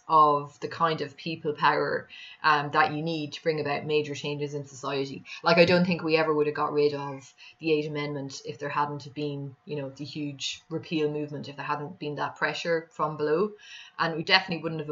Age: 20-39